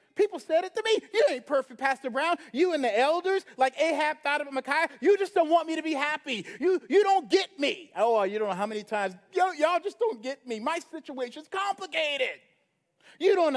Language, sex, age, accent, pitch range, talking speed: English, male, 40-59, American, 250-350 Hz, 220 wpm